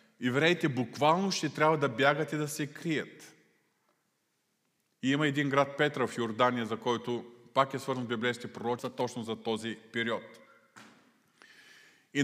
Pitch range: 115-150 Hz